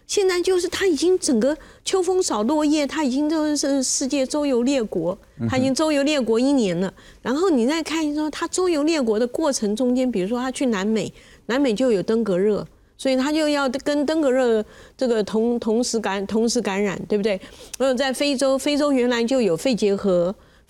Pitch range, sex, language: 205-280 Hz, female, Chinese